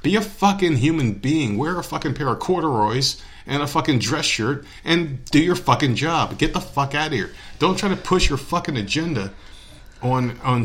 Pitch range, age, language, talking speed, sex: 105-150 Hz, 40-59, English, 205 wpm, male